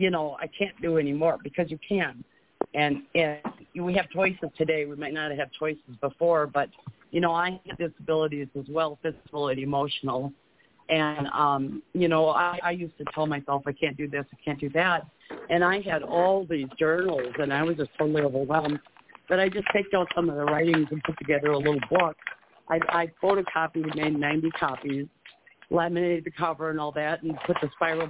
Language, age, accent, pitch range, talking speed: English, 50-69, American, 145-175 Hz, 205 wpm